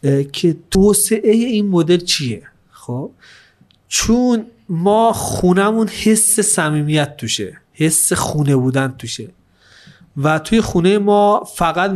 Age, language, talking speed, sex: 30-49, Persian, 110 wpm, male